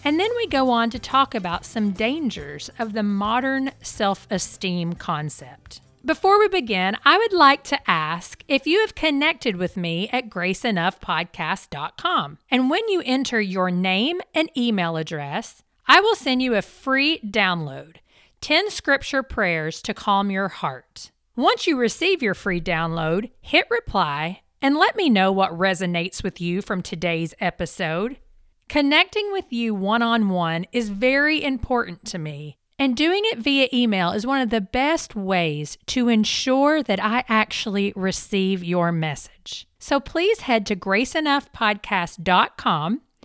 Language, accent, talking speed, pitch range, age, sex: English, American, 145 wpm, 180-270 Hz, 40-59, female